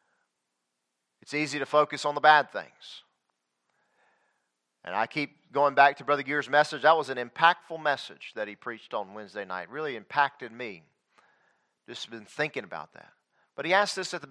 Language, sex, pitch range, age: English, male, 115-180 Hz, 40-59